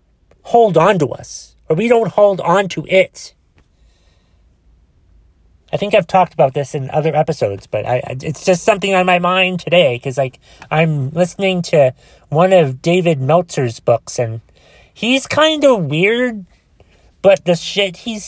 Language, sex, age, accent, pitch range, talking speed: English, male, 30-49, American, 115-170 Hz, 155 wpm